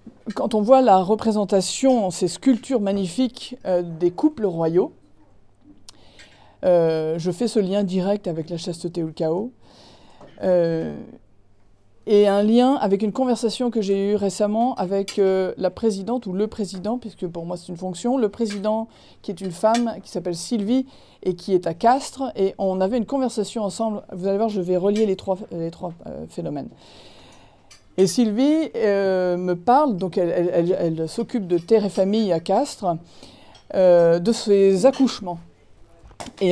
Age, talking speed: 40-59, 165 wpm